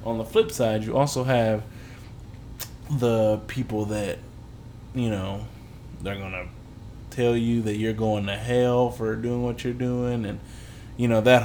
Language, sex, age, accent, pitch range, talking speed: English, male, 20-39, American, 110-125 Hz, 160 wpm